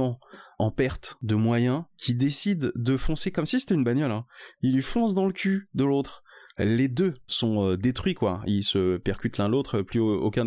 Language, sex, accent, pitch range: French, male, French, 105-130 Hz